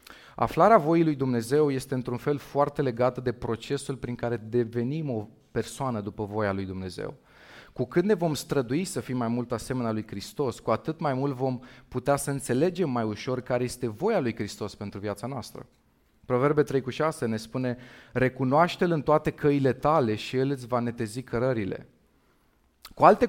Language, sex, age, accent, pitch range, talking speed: Romanian, male, 30-49, native, 115-150 Hz, 175 wpm